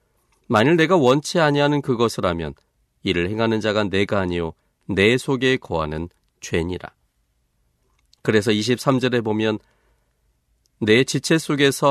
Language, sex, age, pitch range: Korean, male, 40-59, 85-130 Hz